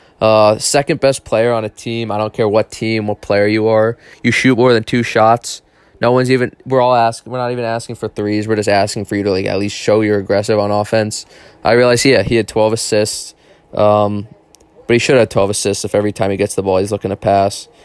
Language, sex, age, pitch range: English, male, 20-39, 100-115 Hz